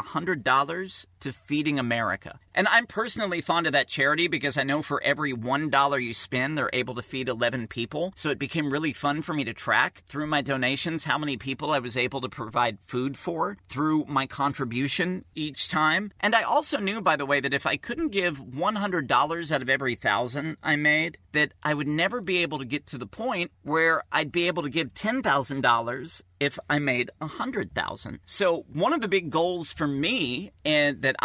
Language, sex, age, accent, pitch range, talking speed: English, male, 40-59, American, 130-165 Hz, 195 wpm